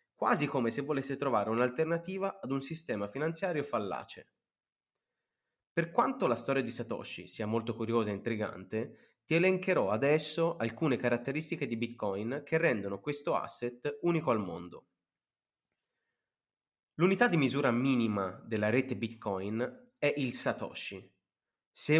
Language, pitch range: Italian, 115-155 Hz